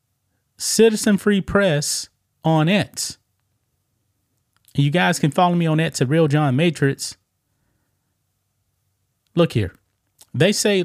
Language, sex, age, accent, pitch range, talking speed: English, male, 30-49, American, 105-175 Hz, 110 wpm